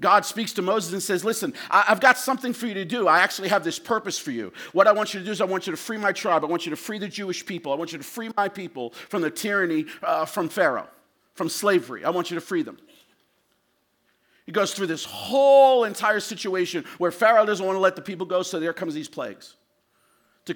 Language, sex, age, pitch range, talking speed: English, male, 50-69, 170-230 Hz, 250 wpm